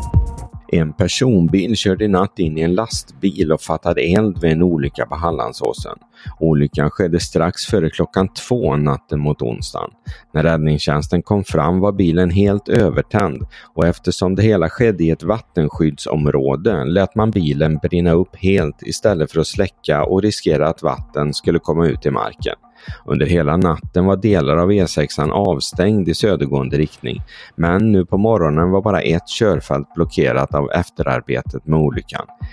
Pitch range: 75-95 Hz